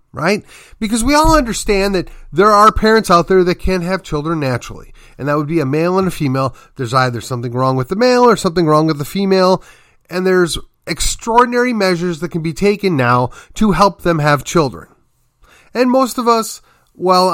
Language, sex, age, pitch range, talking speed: English, male, 30-49, 145-200 Hz, 195 wpm